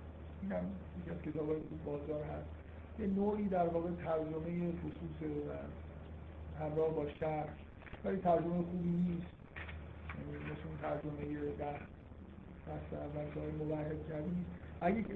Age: 50-69